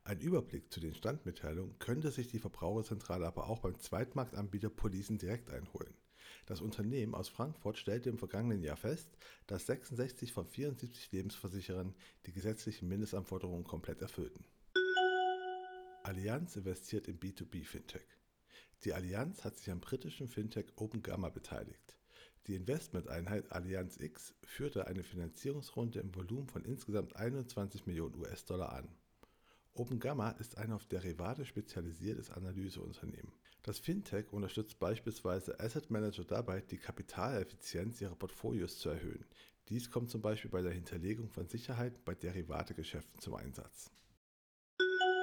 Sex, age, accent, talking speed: male, 60-79, German, 130 wpm